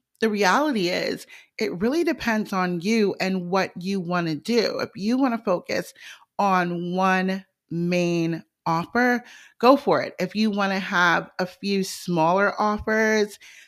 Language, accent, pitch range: English, American, 165-205 Hz